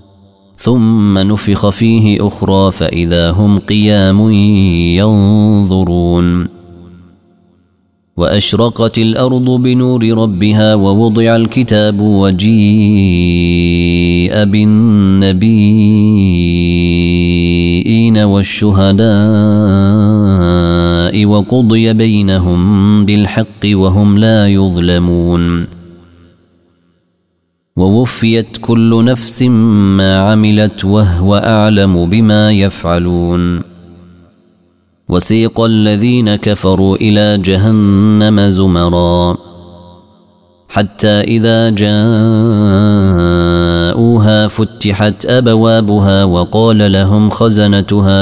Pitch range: 90-110 Hz